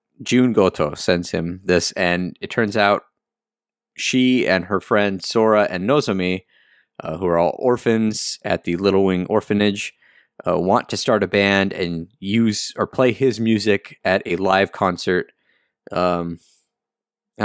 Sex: male